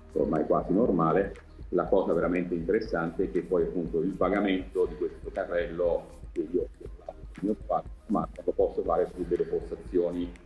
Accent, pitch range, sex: native, 80-105 Hz, male